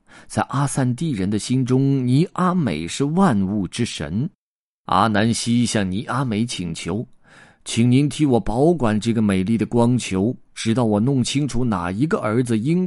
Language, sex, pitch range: Chinese, male, 100-140 Hz